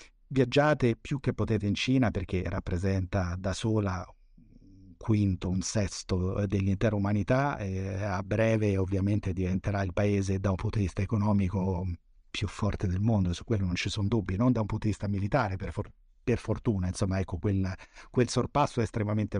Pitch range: 100-115 Hz